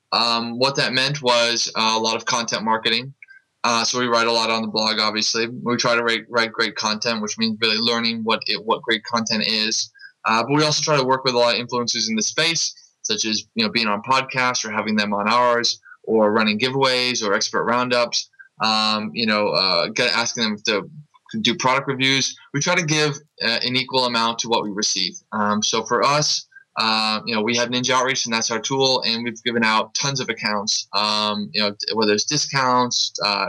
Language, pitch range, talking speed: English, 115-140 Hz, 220 wpm